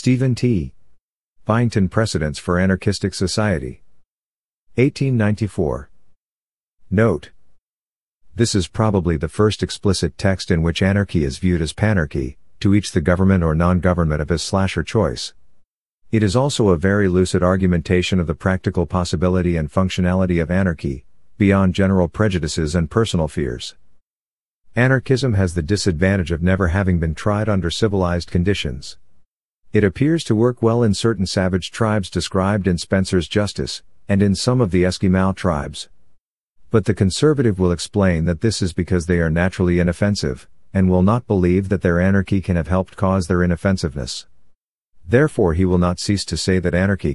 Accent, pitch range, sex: American, 85-105 Hz, male